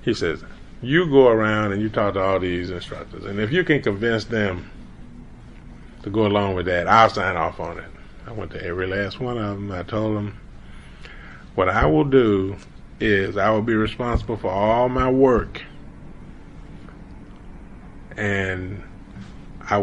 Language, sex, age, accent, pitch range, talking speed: English, male, 30-49, American, 100-140 Hz, 165 wpm